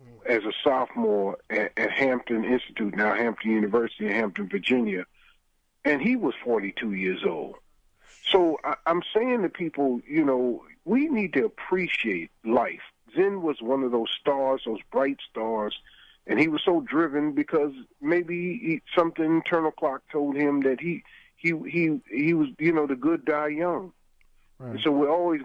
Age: 50-69